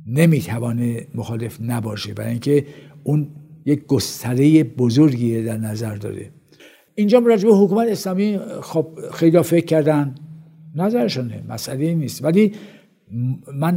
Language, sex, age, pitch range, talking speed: Persian, male, 60-79, 130-170 Hz, 120 wpm